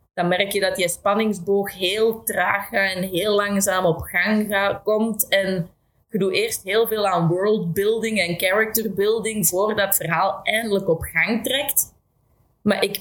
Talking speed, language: 150 wpm, Dutch